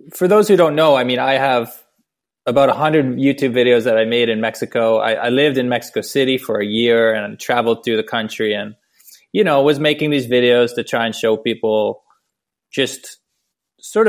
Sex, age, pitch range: male, 20-39, 115-140 Hz